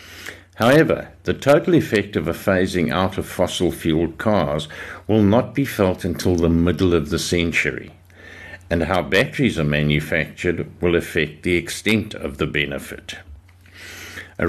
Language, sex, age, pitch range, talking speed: English, male, 60-79, 75-100 Hz, 145 wpm